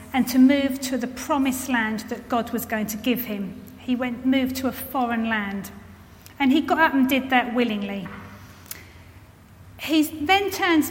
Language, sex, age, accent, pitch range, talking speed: English, female, 40-59, British, 235-300 Hz, 175 wpm